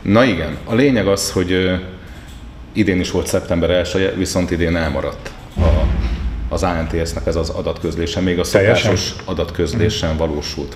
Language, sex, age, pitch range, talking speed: Hungarian, male, 30-49, 80-90 Hz, 145 wpm